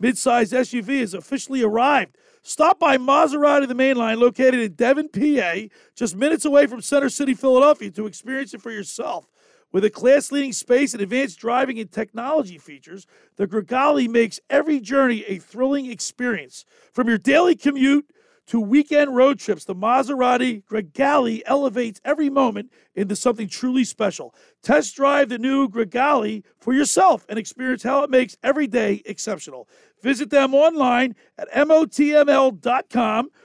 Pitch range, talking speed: 220-280 Hz, 155 wpm